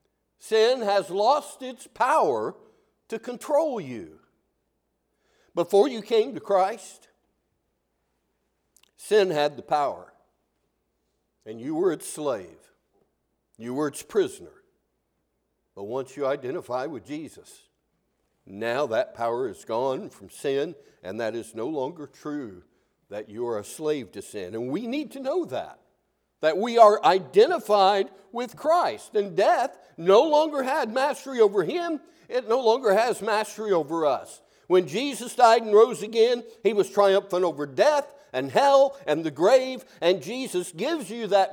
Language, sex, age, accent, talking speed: English, male, 60-79, American, 145 wpm